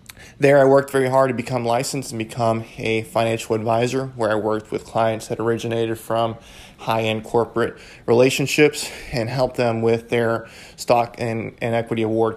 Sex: male